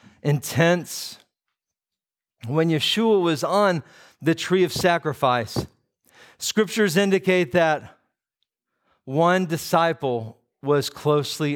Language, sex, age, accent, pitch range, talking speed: English, male, 50-69, American, 120-165 Hz, 85 wpm